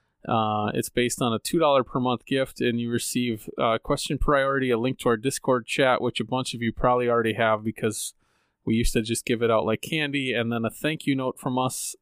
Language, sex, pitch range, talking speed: English, male, 115-135 Hz, 240 wpm